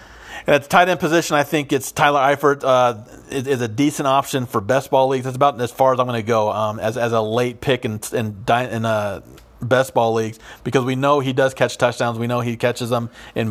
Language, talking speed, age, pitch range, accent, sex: English, 245 wpm, 40-59, 115-130 Hz, American, male